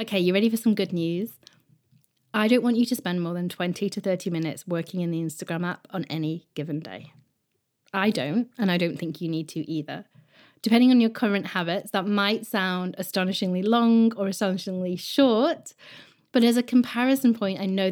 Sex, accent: female, British